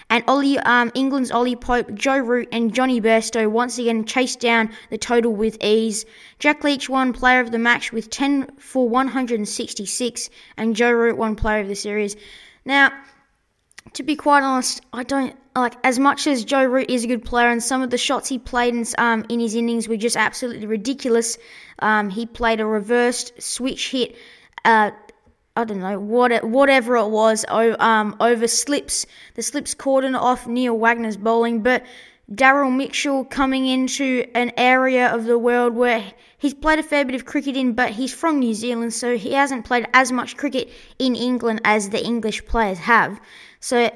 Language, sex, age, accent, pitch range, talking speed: English, female, 20-39, Australian, 230-260 Hz, 180 wpm